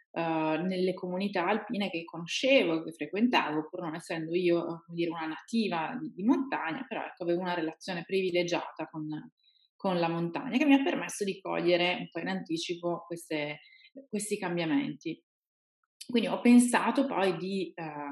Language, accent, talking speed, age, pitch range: Italian, native, 160 wpm, 30-49, 165-205 Hz